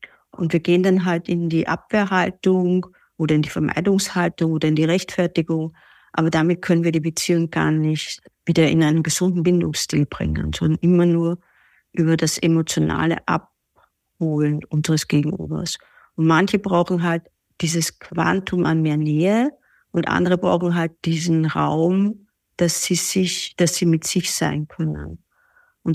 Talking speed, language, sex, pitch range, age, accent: 150 wpm, German, female, 160-180 Hz, 50-69, German